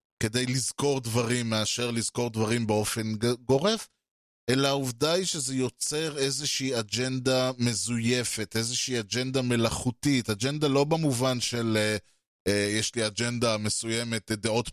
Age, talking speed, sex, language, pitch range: 20-39, 120 wpm, male, Hebrew, 115-145 Hz